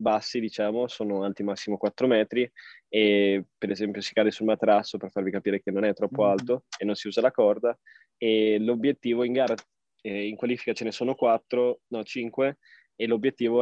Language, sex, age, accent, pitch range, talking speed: Italian, male, 20-39, native, 105-120 Hz, 190 wpm